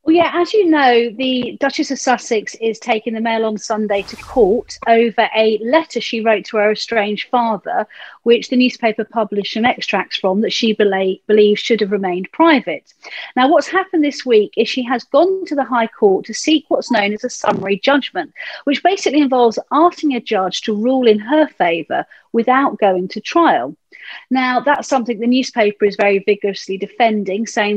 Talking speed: 190 wpm